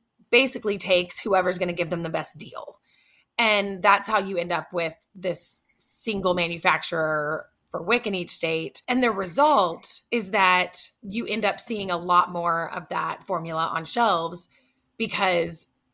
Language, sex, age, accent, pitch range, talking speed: English, female, 20-39, American, 170-210 Hz, 160 wpm